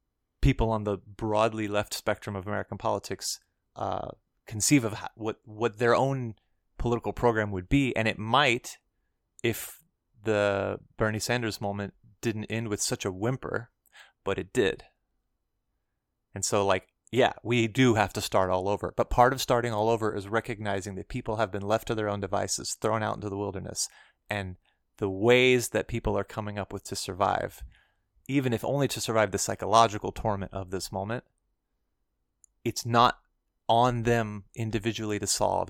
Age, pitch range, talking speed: 30-49, 100-120 Hz, 165 wpm